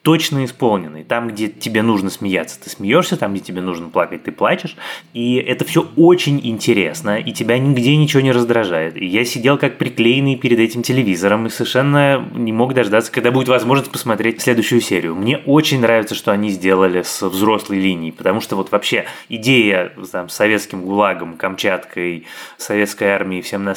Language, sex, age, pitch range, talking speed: Russian, male, 20-39, 105-135 Hz, 170 wpm